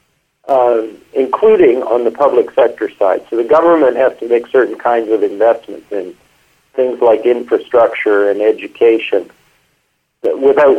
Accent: American